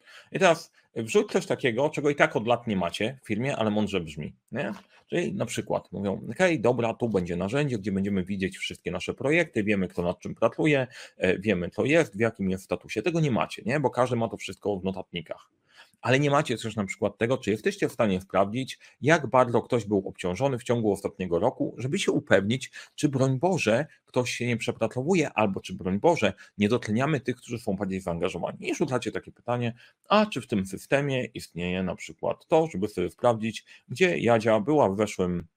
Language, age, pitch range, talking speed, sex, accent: Polish, 30-49, 95-125 Hz, 200 wpm, male, native